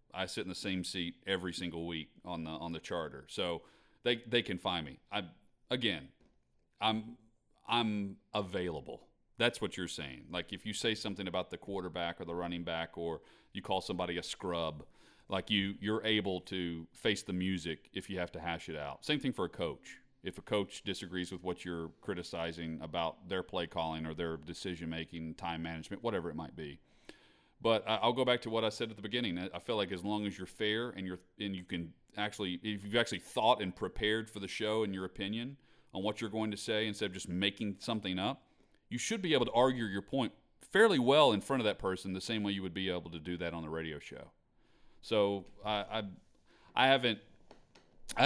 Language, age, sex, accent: English, 40-59, male, American